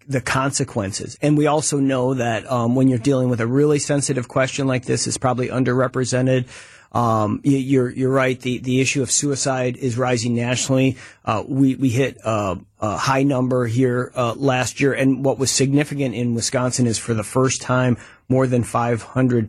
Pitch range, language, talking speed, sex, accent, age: 120-135 Hz, English, 185 wpm, male, American, 40-59